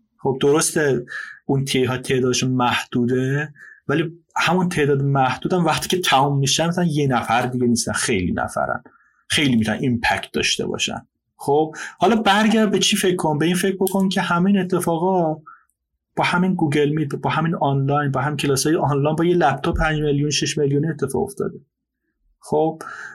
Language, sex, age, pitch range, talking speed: Persian, male, 30-49, 130-170 Hz, 160 wpm